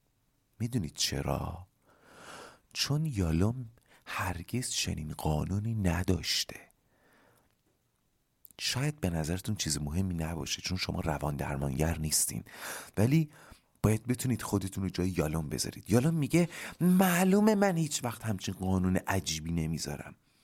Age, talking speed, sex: 40-59, 110 wpm, male